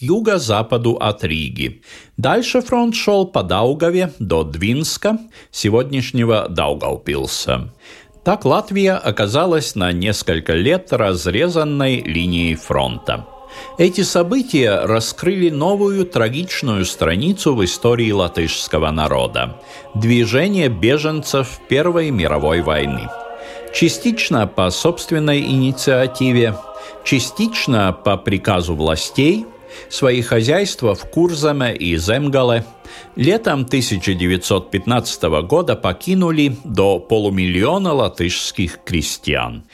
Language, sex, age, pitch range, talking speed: Russian, male, 50-69, 100-165 Hz, 90 wpm